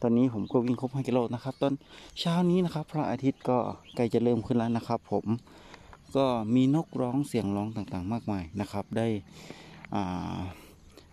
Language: Thai